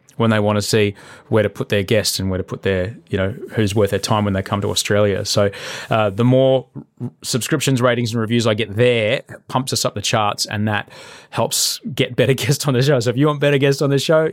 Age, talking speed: 20-39, 250 wpm